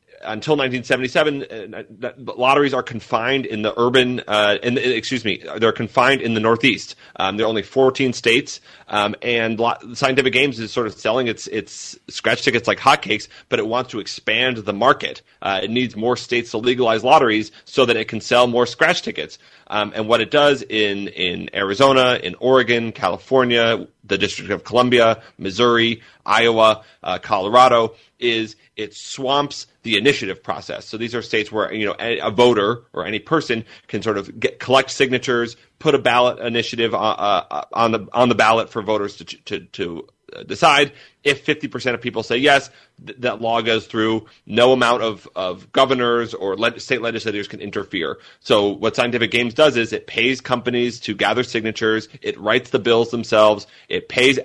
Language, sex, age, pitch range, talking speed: English, male, 30-49, 110-130 Hz, 180 wpm